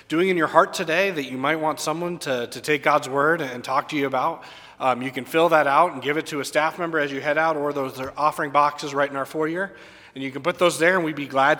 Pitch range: 140-165 Hz